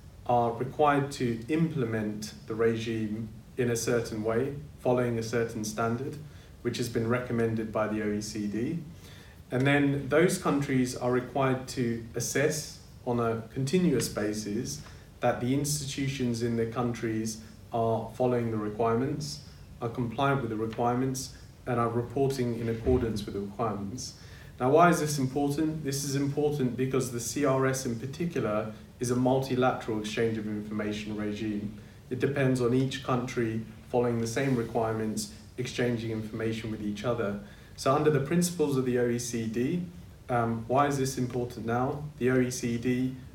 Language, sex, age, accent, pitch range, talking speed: English, male, 30-49, British, 110-130 Hz, 145 wpm